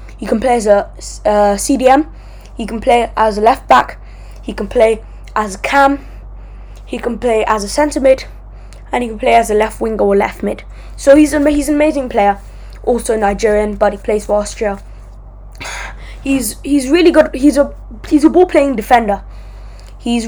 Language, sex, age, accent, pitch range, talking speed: English, female, 10-29, British, 210-255 Hz, 185 wpm